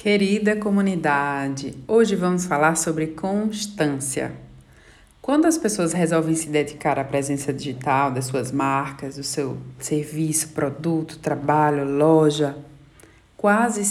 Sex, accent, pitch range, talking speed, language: female, Brazilian, 155-185 Hz, 110 wpm, Portuguese